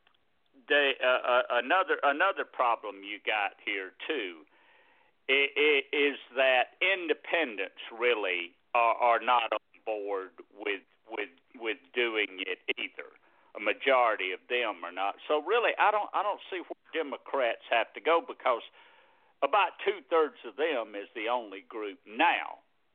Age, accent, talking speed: 60-79, American, 145 wpm